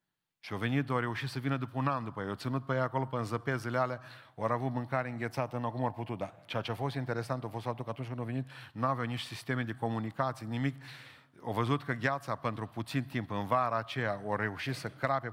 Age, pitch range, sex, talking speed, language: 40-59, 115-135 Hz, male, 240 wpm, Romanian